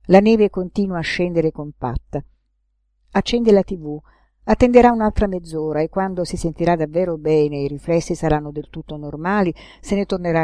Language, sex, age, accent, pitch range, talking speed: Italian, female, 50-69, native, 170-245 Hz, 155 wpm